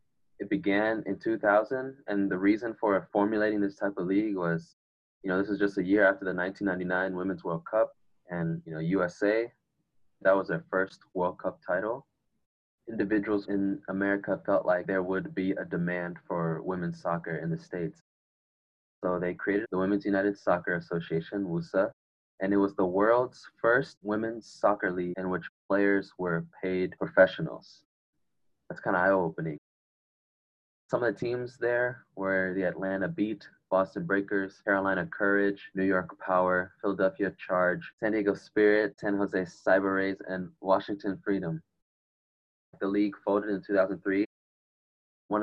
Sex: male